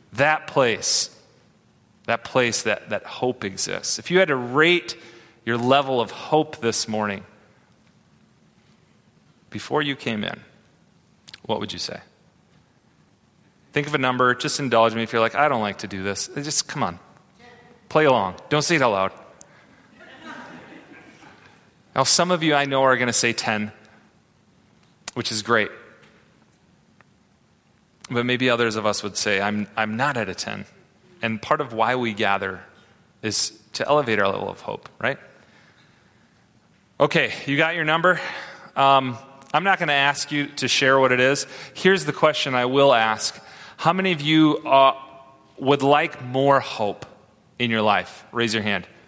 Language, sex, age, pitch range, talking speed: English, male, 30-49, 110-150 Hz, 160 wpm